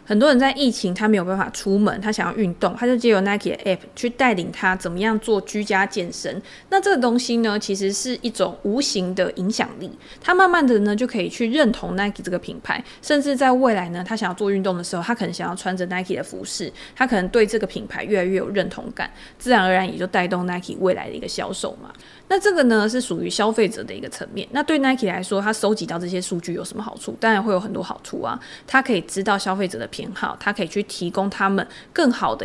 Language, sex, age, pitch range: Chinese, female, 20-39, 190-235 Hz